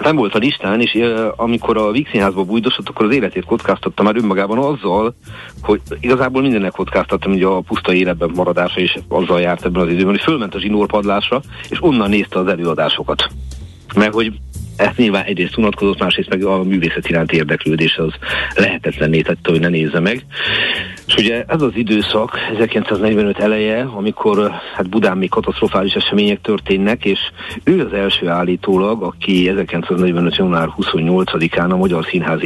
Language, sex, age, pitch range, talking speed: Hungarian, male, 50-69, 85-105 Hz, 155 wpm